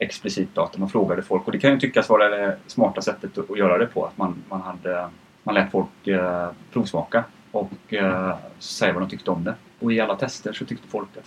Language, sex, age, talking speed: English, male, 30-49, 230 wpm